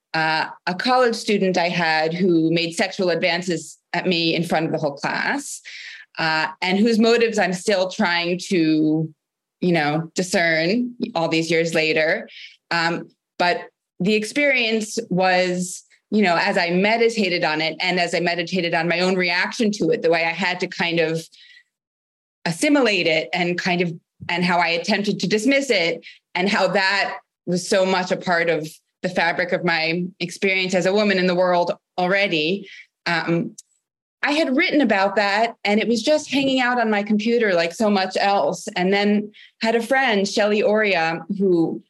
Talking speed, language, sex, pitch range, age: 175 wpm, English, female, 170-210 Hz, 30-49